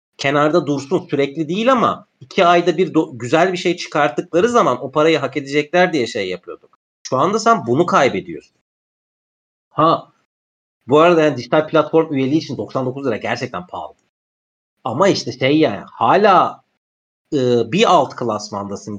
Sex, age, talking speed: male, 40-59, 150 wpm